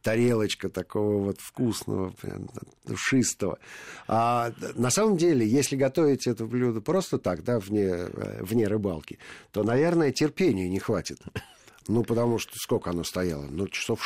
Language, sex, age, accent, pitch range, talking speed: Russian, male, 50-69, native, 90-120 Hz, 135 wpm